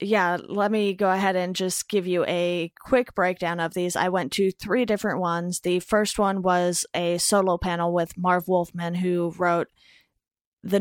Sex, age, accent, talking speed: female, 20-39, American, 185 wpm